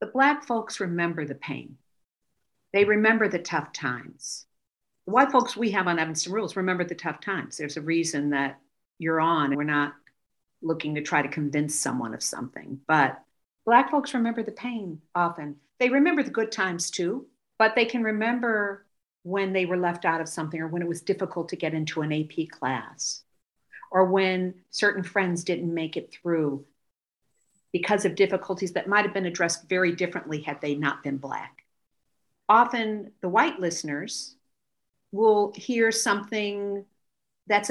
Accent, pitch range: American, 165-220 Hz